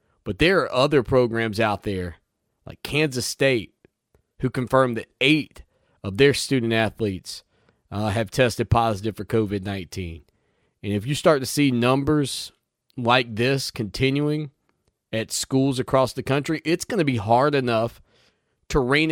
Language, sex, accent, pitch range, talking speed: English, male, American, 110-145 Hz, 140 wpm